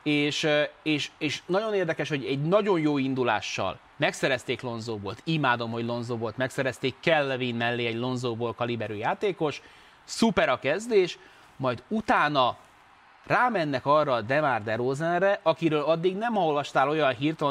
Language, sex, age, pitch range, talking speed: Hungarian, male, 30-49, 125-165 Hz, 135 wpm